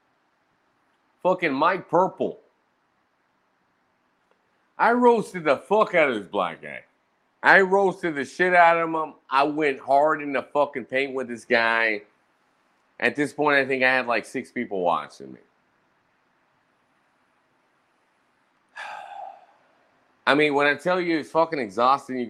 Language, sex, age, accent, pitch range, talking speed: English, male, 30-49, American, 115-165 Hz, 135 wpm